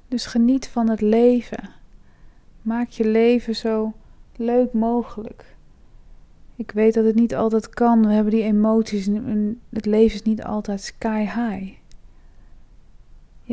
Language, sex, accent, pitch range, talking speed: Dutch, female, Dutch, 195-230 Hz, 135 wpm